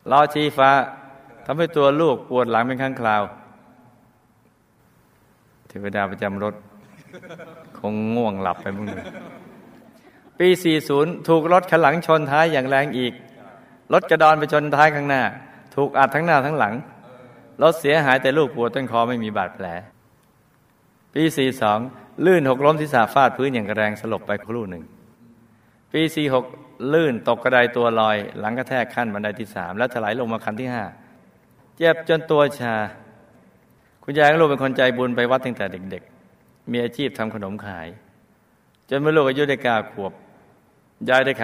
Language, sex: Thai, male